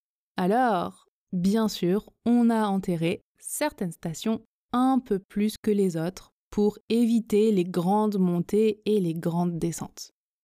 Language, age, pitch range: French, 20-39, 195-260 Hz